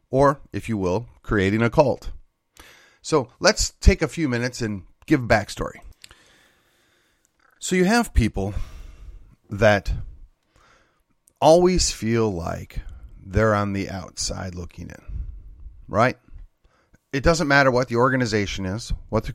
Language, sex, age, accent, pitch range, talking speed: English, male, 30-49, American, 95-130 Hz, 125 wpm